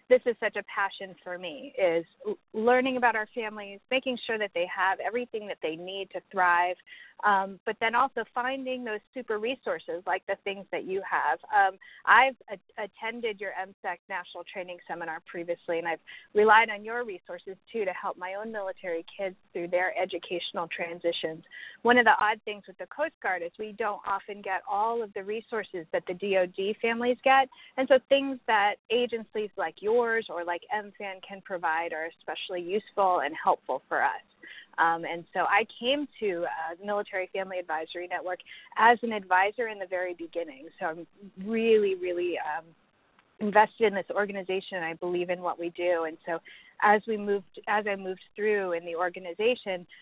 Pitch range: 175-220 Hz